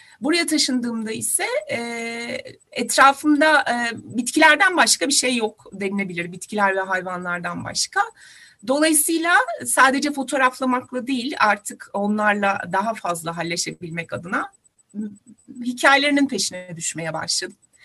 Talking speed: 95 wpm